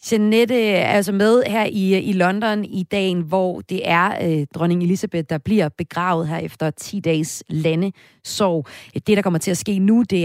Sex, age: female, 30-49